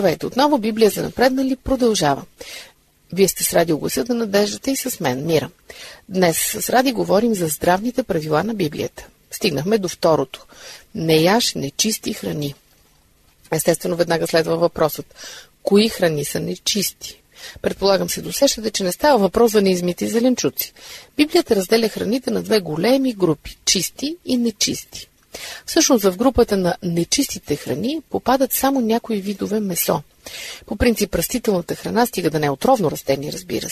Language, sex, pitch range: Bulgarian, female, 170-250 Hz